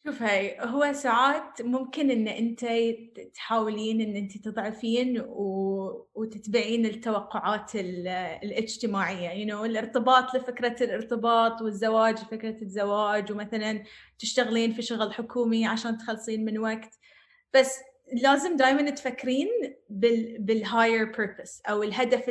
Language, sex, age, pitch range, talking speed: English, female, 20-39, 220-255 Hz, 110 wpm